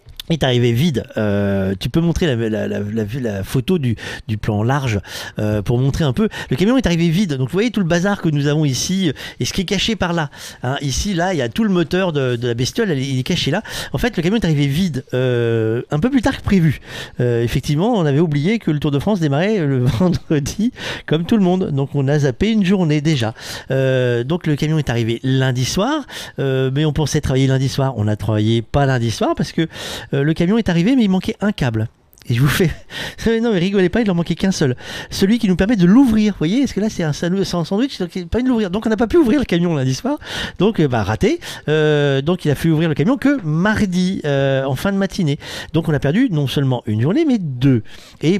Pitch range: 130-190 Hz